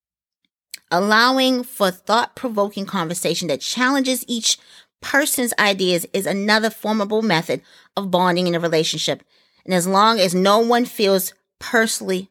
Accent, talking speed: American, 125 wpm